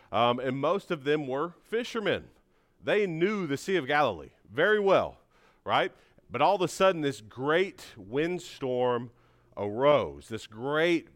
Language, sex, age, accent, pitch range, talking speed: English, male, 40-59, American, 125-160 Hz, 145 wpm